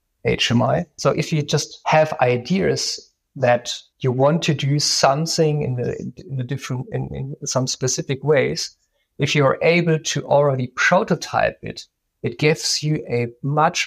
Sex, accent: male, German